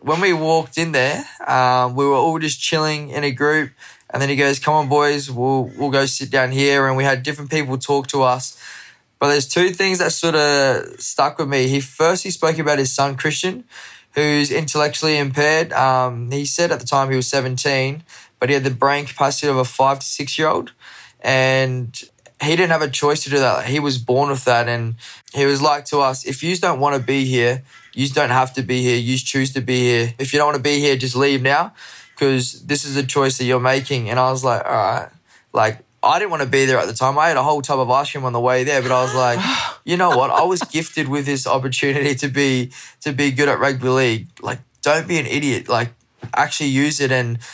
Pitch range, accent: 130-145 Hz, Australian